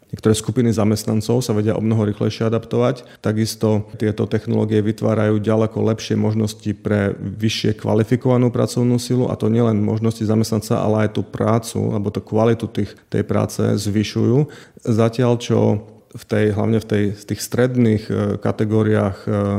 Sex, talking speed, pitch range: male, 140 wpm, 105-115 Hz